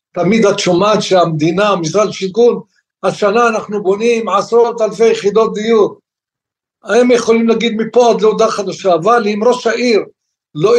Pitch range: 180-220 Hz